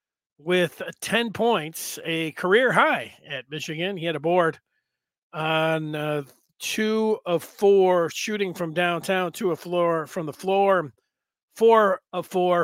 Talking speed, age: 140 wpm, 40-59